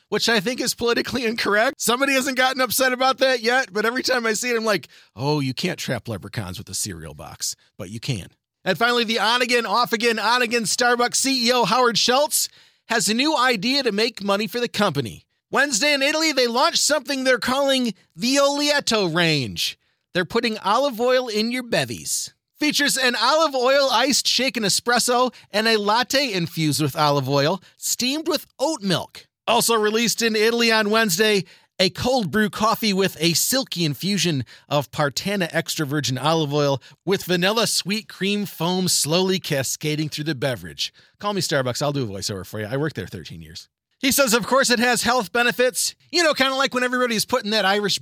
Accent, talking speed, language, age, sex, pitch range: American, 190 wpm, English, 30-49, male, 170-255 Hz